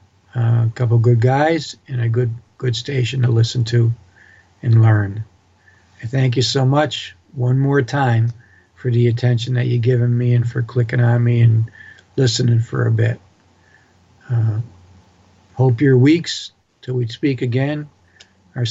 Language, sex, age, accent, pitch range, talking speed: English, male, 60-79, American, 110-130 Hz, 155 wpm